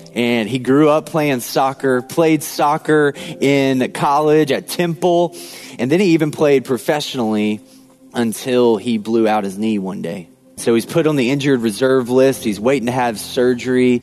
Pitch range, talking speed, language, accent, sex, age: 115-140 Hz, 165 wpm, English, American, male, 20-39